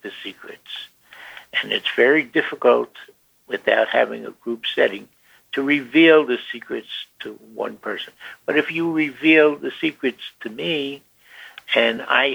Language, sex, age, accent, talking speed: English, male, 60-79, American, 135 wpm